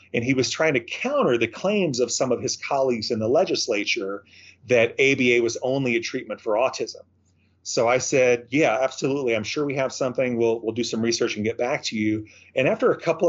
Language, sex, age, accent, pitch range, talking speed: English, male, 30-49, American, 110-125 Hz, 215 wpm